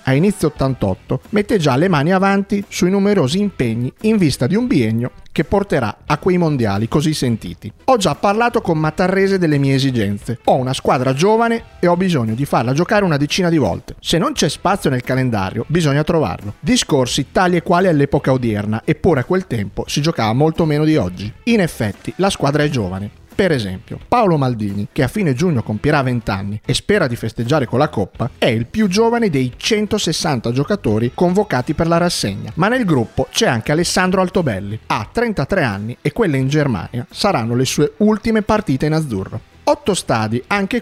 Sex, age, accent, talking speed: male, 40-59, native, 190 wpm